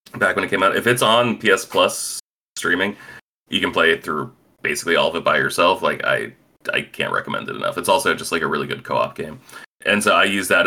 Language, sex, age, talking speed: English, male, 30-49, 240 wpm